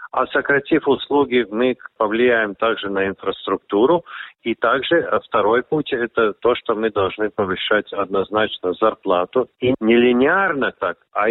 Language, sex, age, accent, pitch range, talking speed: Russian, male, 50-69, native, 100-130 Hz, 145 wpm